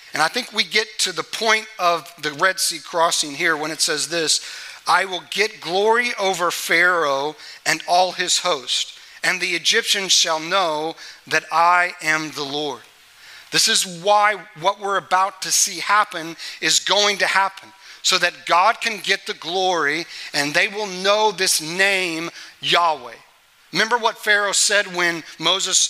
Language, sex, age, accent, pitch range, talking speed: English, male, 40-59, American, 165-205 Hz, 165 wpm